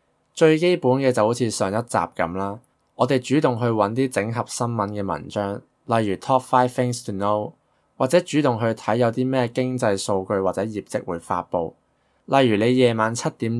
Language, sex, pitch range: Chinese, male, 100-125 Hz